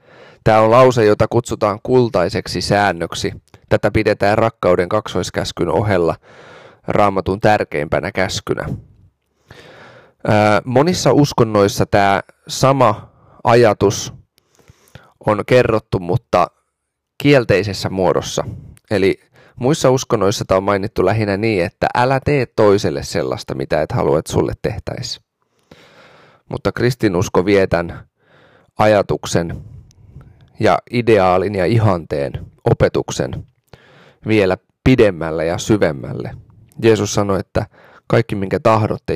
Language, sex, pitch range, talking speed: Finnish, male, 100-120 Hz, 95 wpm